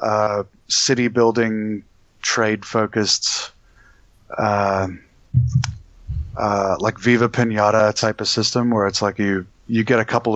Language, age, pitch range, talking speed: English, 30-49, 100-110 Hz, 120 wpm